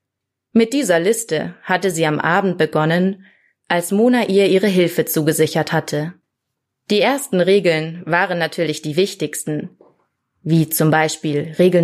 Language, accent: German, German